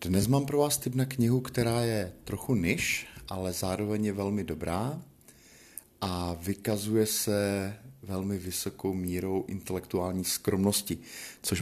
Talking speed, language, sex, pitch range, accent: 130 wpm, Czech, male, 90-110 Hz, native